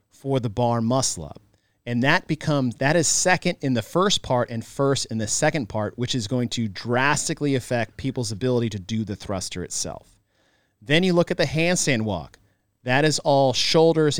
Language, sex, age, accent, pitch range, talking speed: English, male, 40-59, American, 105-145 Hz, 185 wpm